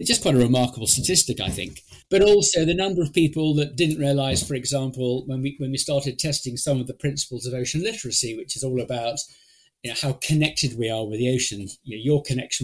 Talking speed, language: 235 wpm, English